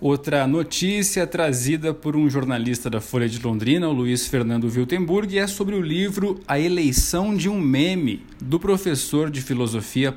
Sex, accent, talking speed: male, Brazilian, 160 wpm